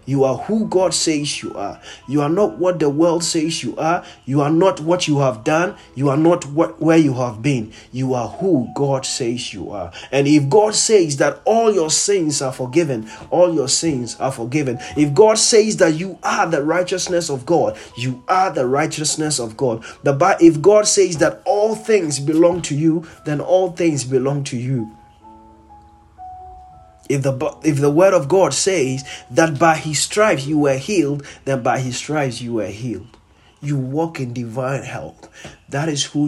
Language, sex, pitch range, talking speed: English, male, 130-175 Hz, 185 wpm